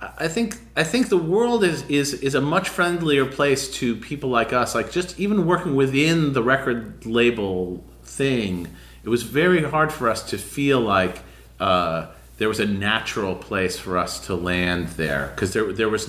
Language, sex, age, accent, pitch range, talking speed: English, male, 30-49, American, 100-140 Hz, 185 wpm